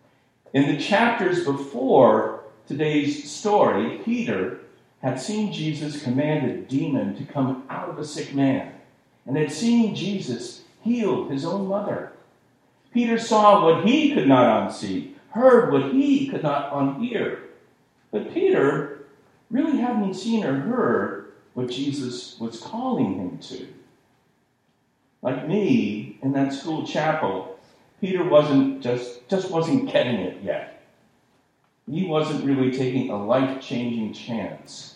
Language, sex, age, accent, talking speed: English, male, 50-69, American, 125 wpm